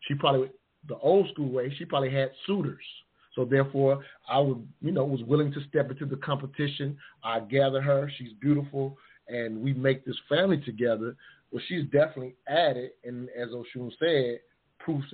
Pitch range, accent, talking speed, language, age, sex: 115-135 Hz, American, 160 wpm, English, 30-49, male